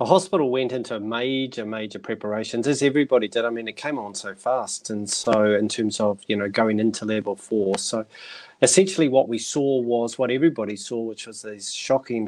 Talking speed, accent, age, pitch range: 200 wpm, Australian, 30-49, 110-135 Hz